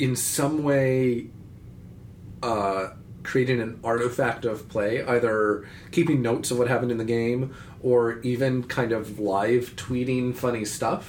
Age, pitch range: 30-49, 110-130 Hz